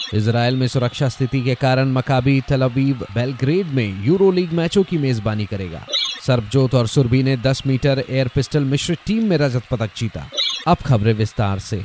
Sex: male